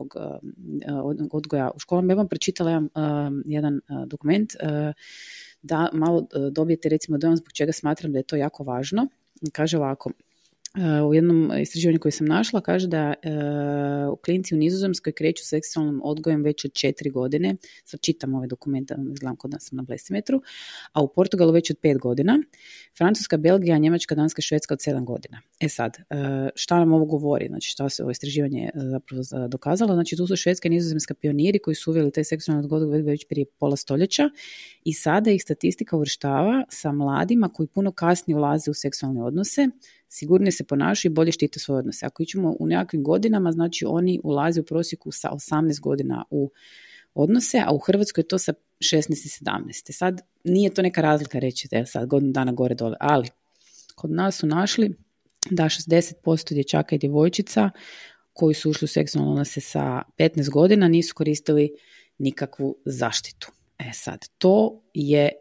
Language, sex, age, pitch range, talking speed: Croatian, female, 30-49, 145-175 Hz, 170 wpm